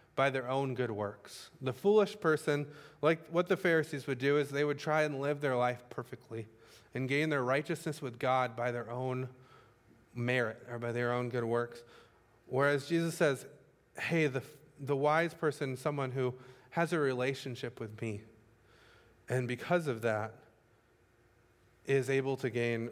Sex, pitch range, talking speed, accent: male, 120-155 Hz, 165 wpm, American